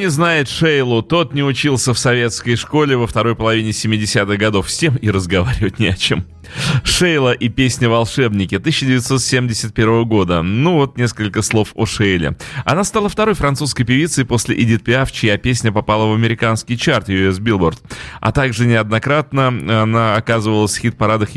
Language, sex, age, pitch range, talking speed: Russian, male, 30-49, 105-140 Hz, 155 wpm